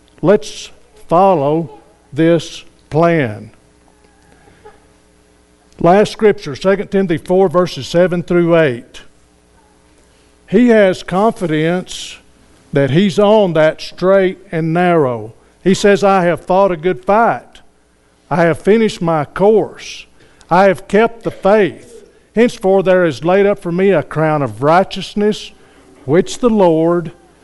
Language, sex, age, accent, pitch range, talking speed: English, male, 60-79, American, 140-190 Hz, 120 wpm